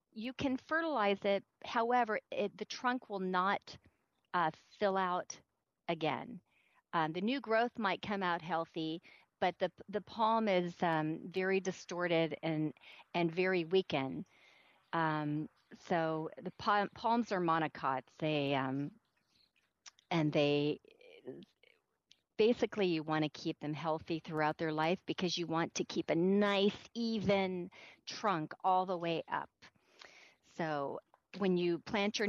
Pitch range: 170-225 Hz